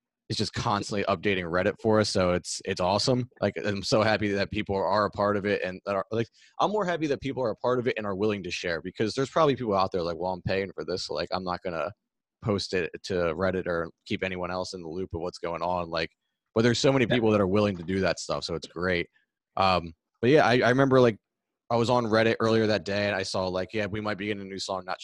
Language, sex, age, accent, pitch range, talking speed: English, male, 20-39, American, 95-125 Hz, 280 wpm